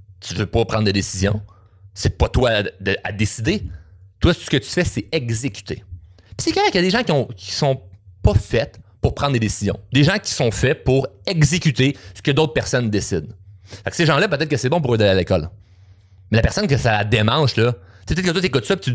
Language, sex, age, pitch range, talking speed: French, male, 30-49, 95-130 Hz, 250 wpm